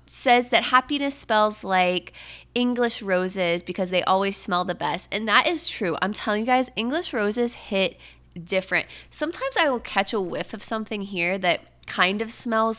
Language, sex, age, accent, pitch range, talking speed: English, female, 20-39, American, 180-225 Hz, 180 wpm